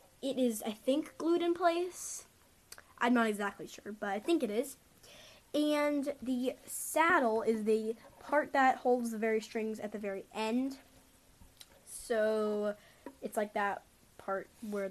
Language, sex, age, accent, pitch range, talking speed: English, female, 10-29, American, 210-290 Hz, 150 wpm